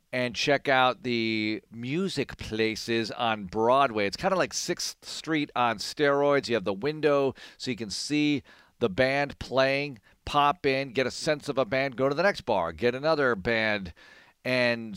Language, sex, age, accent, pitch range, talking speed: English, male, 50-69, American, 100-130 Hz, 175 wpm